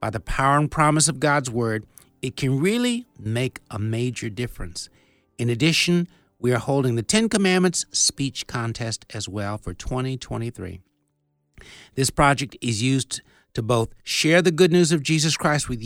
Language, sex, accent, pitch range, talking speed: English, male, American, 115-150 Hz, 165 wpm